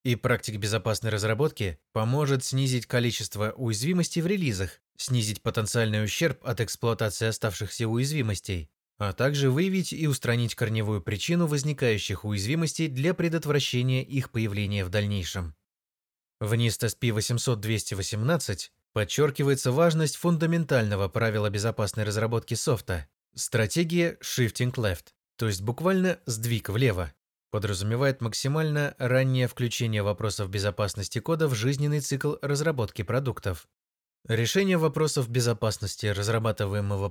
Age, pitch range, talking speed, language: 20-39, 105-135 Hz, 110 wpm, Russian